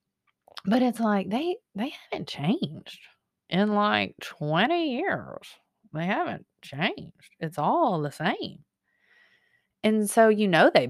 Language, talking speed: English, 125 wpm